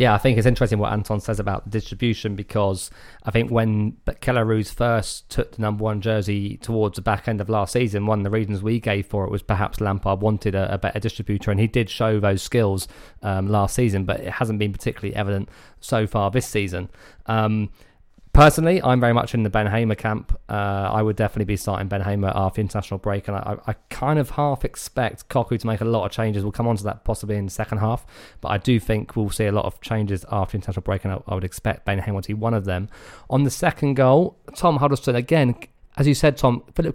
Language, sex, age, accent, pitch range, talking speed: English, male, 20-39, British, 105-125 Hz, 240 wpm